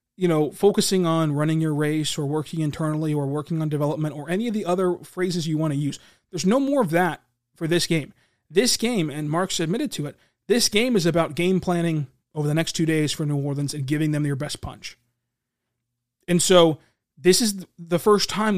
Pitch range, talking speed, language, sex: 150-195 Hz, 215 wpm, English, male